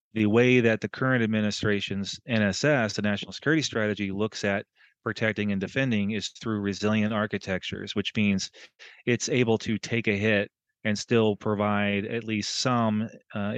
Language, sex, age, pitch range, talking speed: English, male, 30-49, 100-110 Hz, 155 wpm